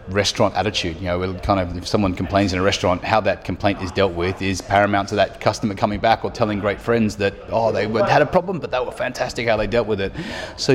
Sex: male